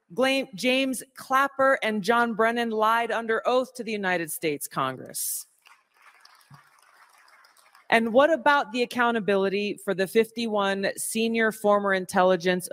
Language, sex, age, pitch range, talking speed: English, female, 40-59, 180-230 Hz, 115 wpm